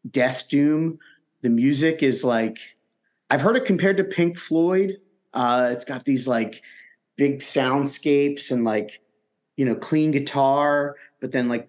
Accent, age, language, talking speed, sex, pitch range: American, 30-49, English, 150 wpm, male, 115-140 Hz